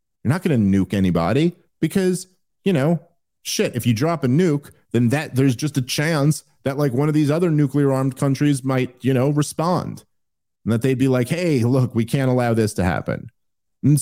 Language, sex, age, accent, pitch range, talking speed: English, male, 40-59, American, 110-140 Hz, 205 wpm